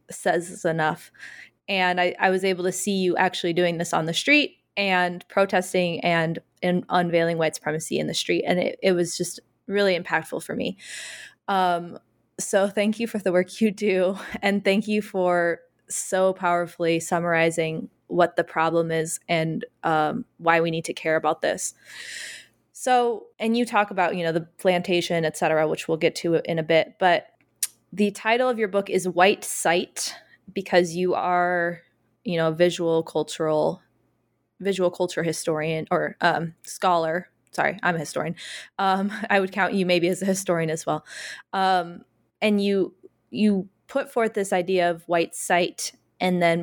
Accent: American